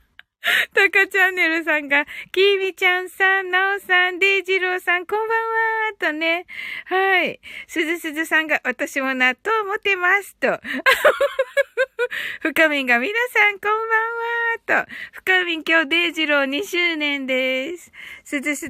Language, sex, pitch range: Japanese, female, 300-415 Hz